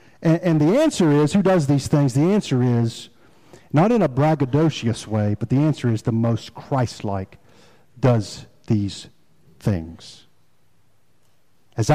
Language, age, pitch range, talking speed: English, 50-69, 120-165 Hz, 140 wpm